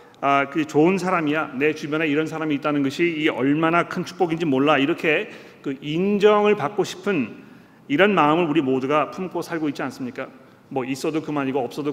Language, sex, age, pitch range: Korean, male, 40-59, 145-195 Hz